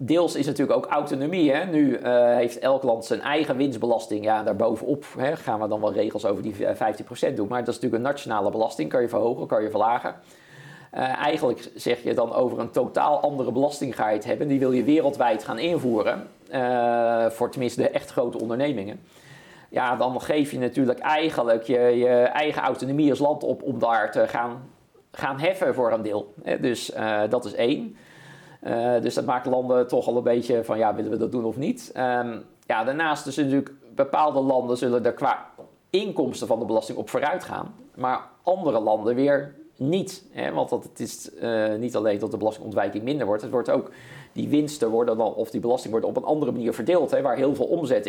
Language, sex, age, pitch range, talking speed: Dutch, male, 50-69, 115-140 Hz, 205 wpm